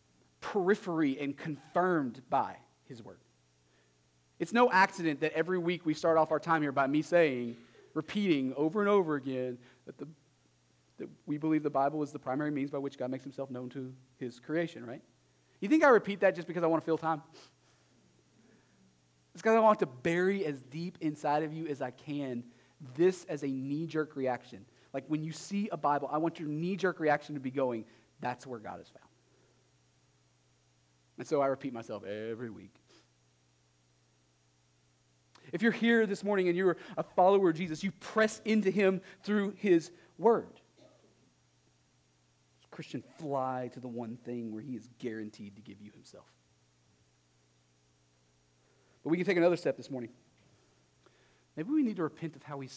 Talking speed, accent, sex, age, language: 175 wpm, American, male, 30-49, English